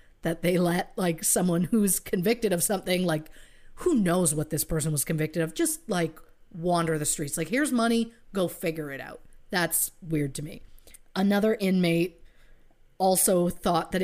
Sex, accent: female, American